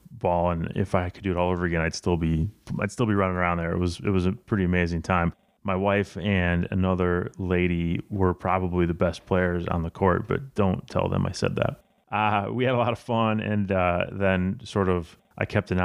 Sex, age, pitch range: male, 30-49, 90-100 Hz